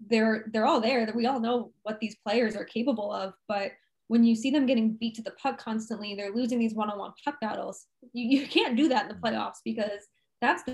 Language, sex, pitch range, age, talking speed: English, female, 215-245 Hz, 10-29, 230 wpm